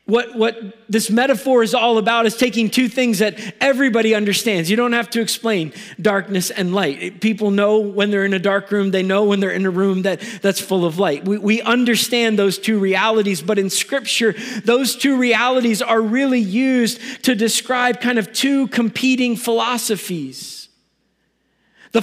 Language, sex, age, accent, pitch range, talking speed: English, male, 40-59, American, 210-245 Hz, 175 wpm